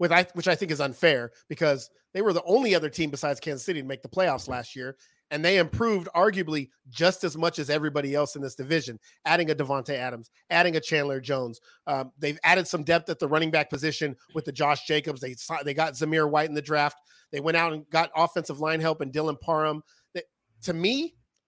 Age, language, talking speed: 40-59, English, 215 wpm